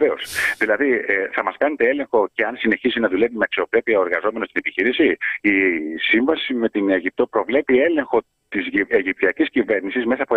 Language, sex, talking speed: Greek, male, 155 wpm